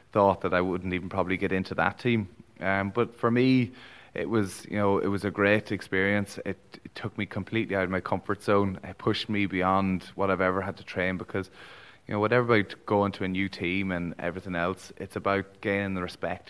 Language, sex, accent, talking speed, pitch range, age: English, male, Irish, 220 wpm, 95-100 Hz, 20-39